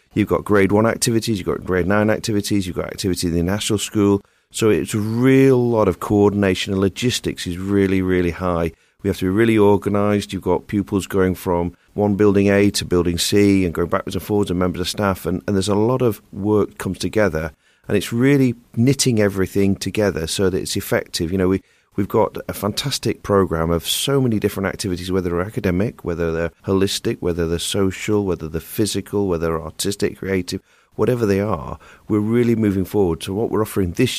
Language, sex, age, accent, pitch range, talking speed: English, male, 40-59, British, 95-115 Hz, 205 wpm